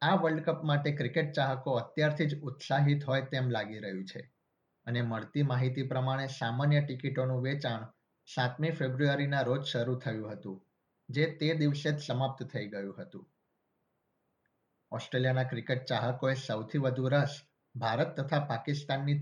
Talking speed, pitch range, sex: 135 wpm, 125-145 Hz, male